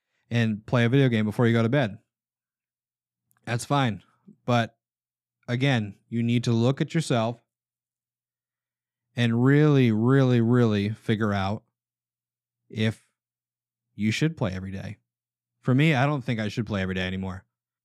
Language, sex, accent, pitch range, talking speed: English, male, American, 105-125 Hz, 145 wpm